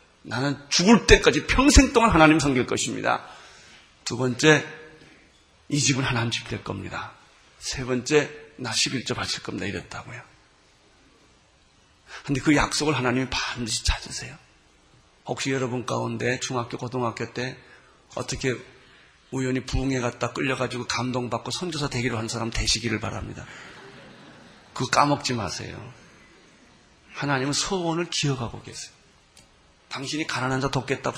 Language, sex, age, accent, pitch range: Korean, male, 40-59, native, 120-155 Hz